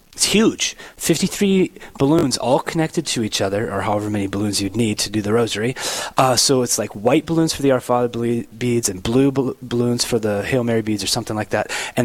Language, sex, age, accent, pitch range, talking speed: English, male, 30-49, American, 120-155 Hz, 225 wpm